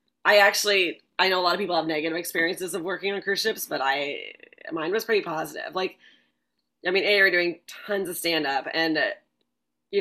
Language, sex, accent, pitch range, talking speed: English, female, American, 165-215 Hz, 210 wpm